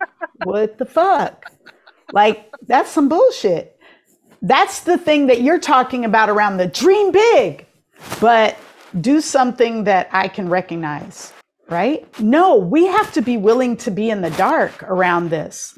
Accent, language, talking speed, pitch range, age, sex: American, English, 150 wpm, 210-290 Hz, 50-69, female